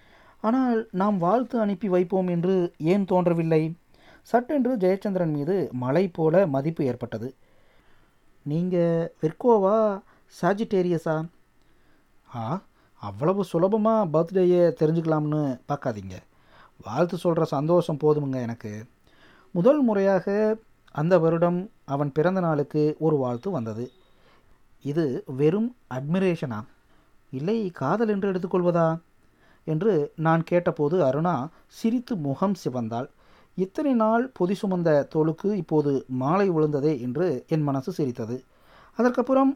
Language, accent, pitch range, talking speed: Tamil, native, 140-195 Hz, 100 wpm